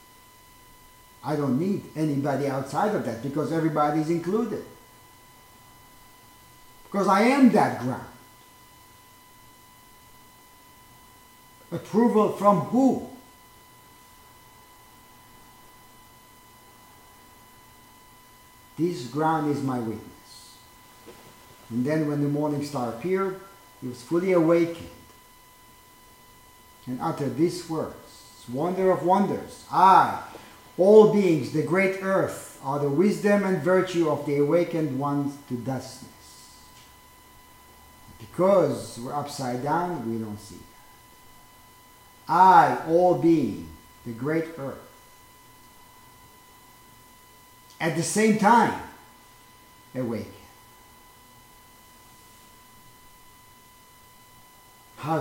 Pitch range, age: 110-160 Hz, 50-69